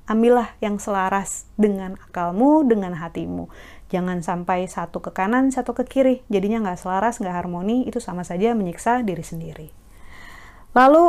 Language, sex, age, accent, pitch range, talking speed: Indonesian, female, 30-49, native, 180-240 Hz, 145 wpm